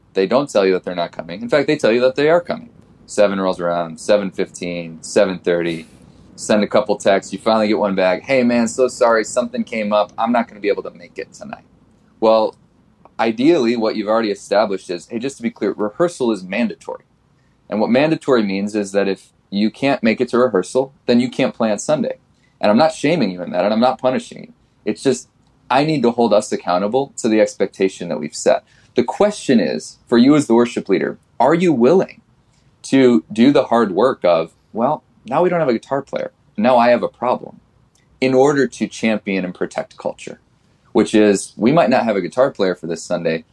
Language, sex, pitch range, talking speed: English, male, 100-130 Hz, 220 wpm